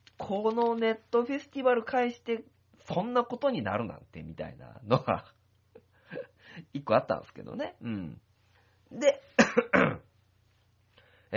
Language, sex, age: Japanese, male, 40-59